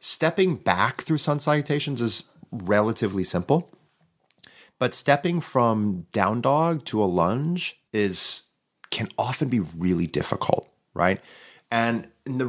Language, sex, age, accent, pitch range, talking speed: English, male, 30-49, American, 95-130 Hz, 125 wpm